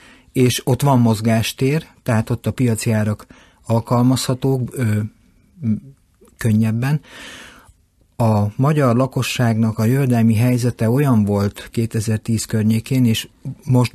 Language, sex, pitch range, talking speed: Hungarian, male, 110-125 Hz, 105 wpm